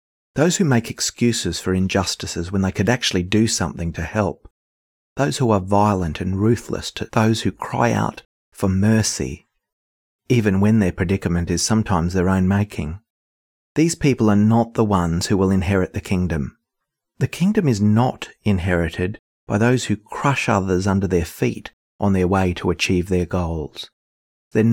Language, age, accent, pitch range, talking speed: English, 30-49, Australian, 90-110 Hz, 165 wpm